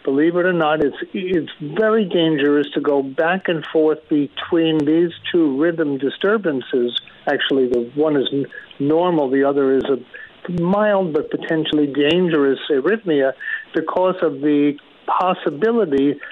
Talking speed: 135 wpm